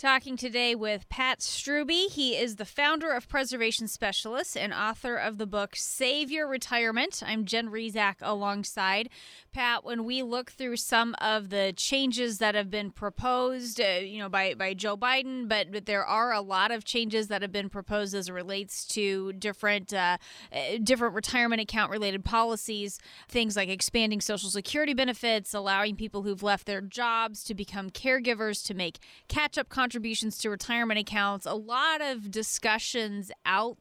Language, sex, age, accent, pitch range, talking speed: English, female, 20-39, American, 205-255 Hz, 170 wpm